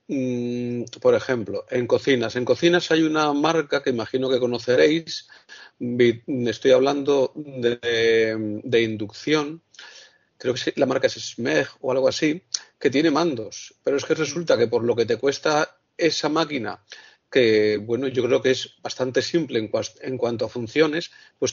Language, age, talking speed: Spanish, 40-59, 155 wpm